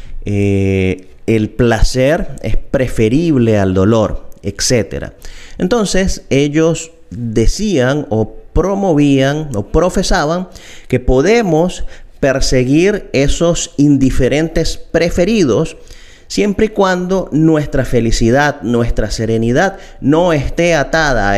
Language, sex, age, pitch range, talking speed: Spanish, male, 30-49, 110-155 Hz, 90 wpm